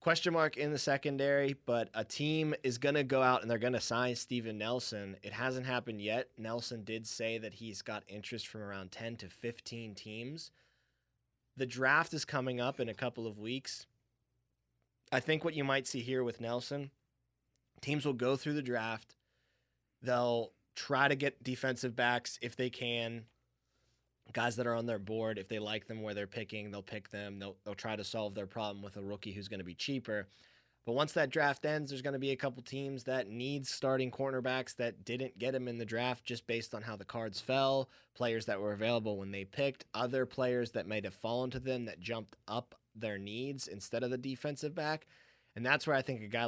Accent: American